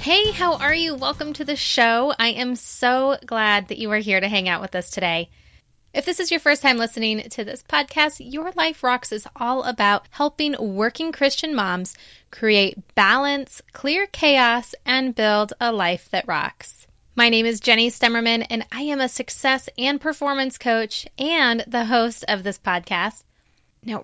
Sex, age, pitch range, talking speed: female, 20-39, 210-265 Hz, 180 wpm